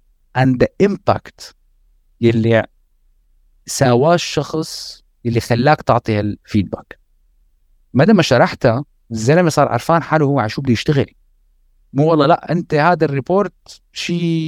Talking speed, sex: 120 wpm, male